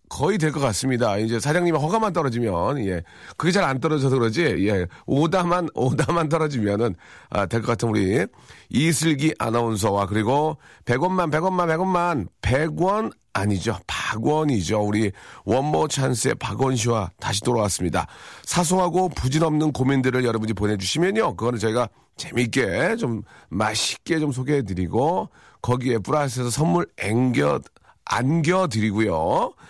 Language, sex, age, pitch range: Korean, male, 40-59, 105-150 Hz